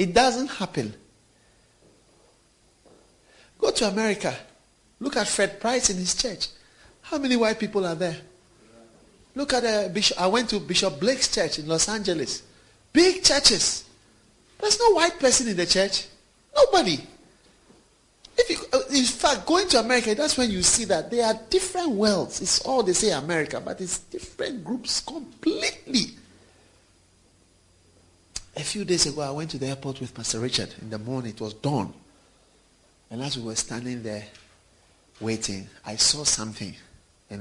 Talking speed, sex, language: 155 wpm, male, English